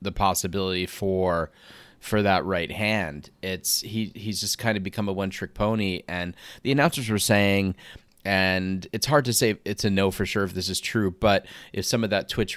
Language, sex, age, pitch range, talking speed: English, male, 30-49, 90-105 Hz, 205 wpm